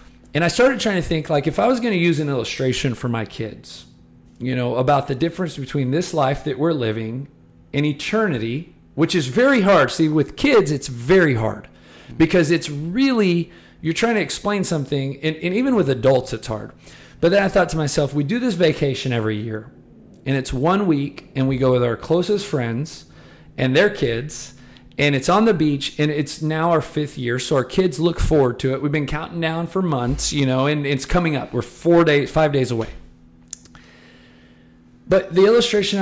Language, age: English, 40-59